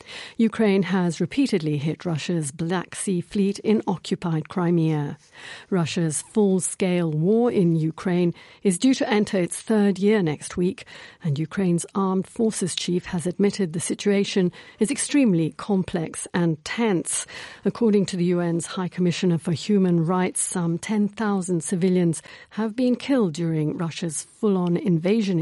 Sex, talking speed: female, 135 wpm